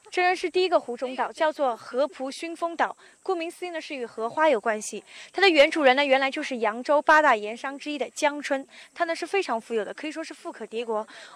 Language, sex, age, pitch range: Chinese, female, 20-39, 235-320 Hz